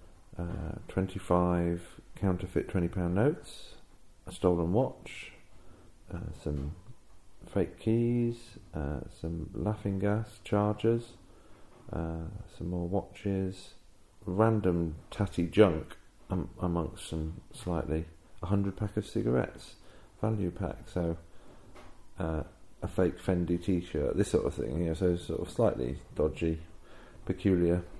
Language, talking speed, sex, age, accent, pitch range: English, 105 wpm, male, 40-59, British, 85-105 Hz